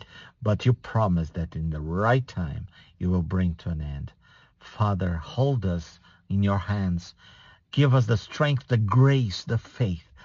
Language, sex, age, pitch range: English, male, 50-69, 90-125 Hz